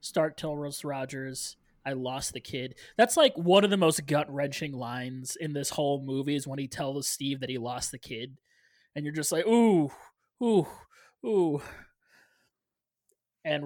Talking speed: 165 wpm